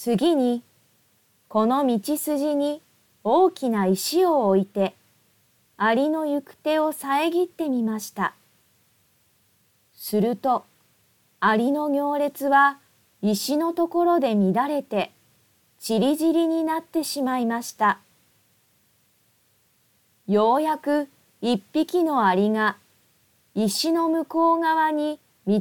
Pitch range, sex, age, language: 205-300 Hz, female, 40-59, Japanese